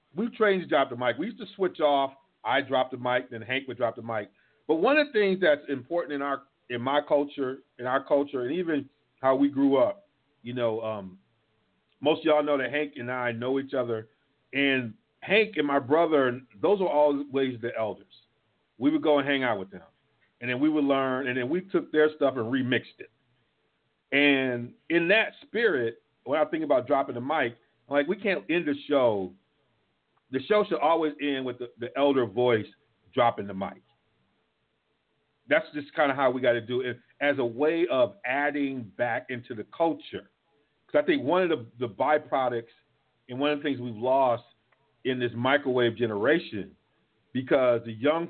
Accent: American